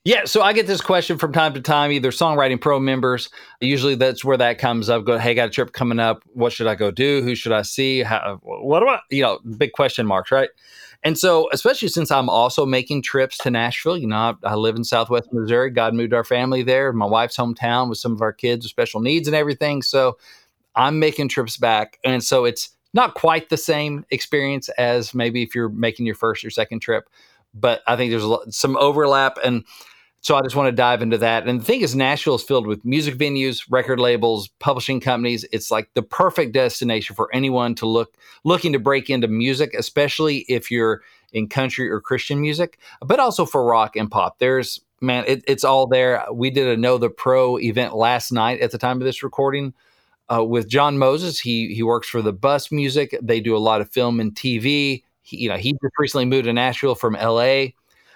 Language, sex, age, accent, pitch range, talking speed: English, male, 40-59, American, 115-140 Hz, 220 wpm